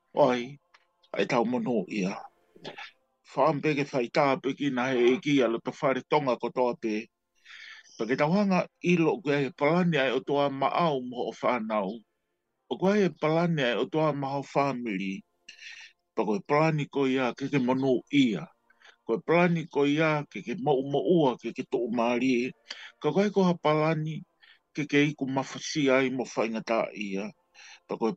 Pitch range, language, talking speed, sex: 125-160 Hz, English, 140 wpm, male